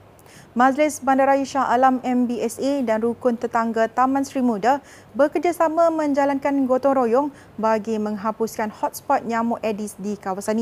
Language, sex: Malay, female